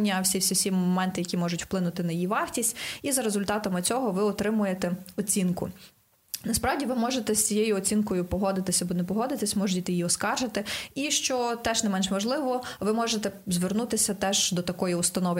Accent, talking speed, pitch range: native, 165 wpm, 185-225 Hz